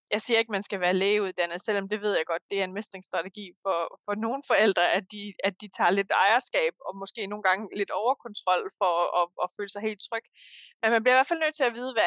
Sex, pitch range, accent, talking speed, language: female, 200-255 Hz, native, 265 wpm, Danish